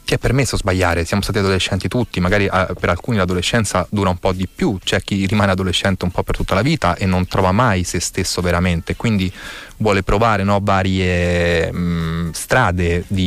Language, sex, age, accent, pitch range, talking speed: Italian, male, 30-49, native, 90-105 Hz, 175 wpm